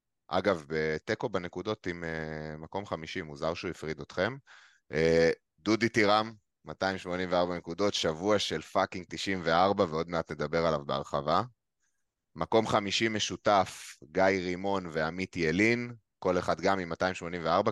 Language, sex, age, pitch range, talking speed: Hebrew, male, 20-39, 80-100 Hz, 120 wpm